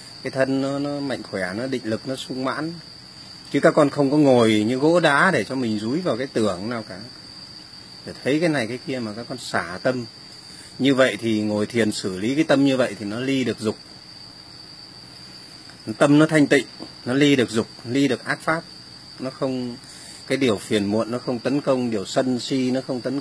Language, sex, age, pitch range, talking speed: Vietnamese, male, 30-49, 110-135 Hz, 220 wpm